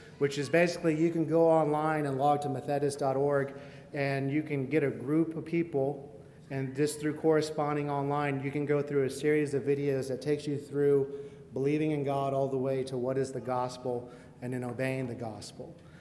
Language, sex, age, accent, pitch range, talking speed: English, male, 30-49, American, 130-150 Hz, 195 wpm